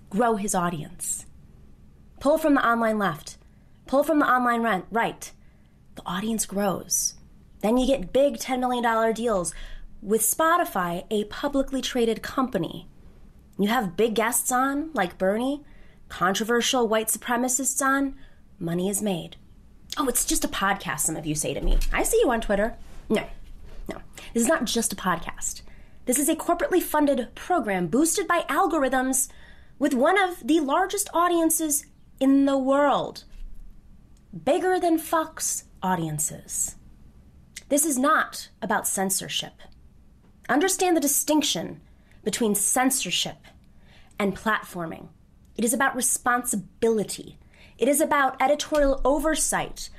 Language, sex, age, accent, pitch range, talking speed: English, female, 20-39, American, 195-295 Hz, 130 wpm